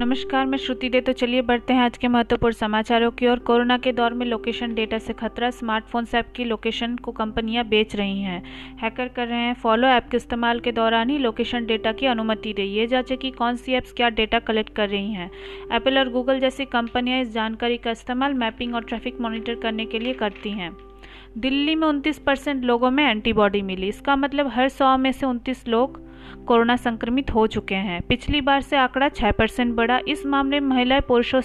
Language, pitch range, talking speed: Hindi, 225-255 Hz, 210 wpm